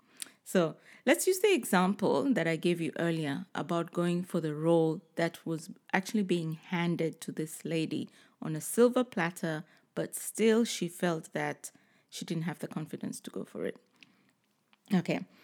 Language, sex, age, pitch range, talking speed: English, female, 30-49, 180-250 Hz, 165 wpm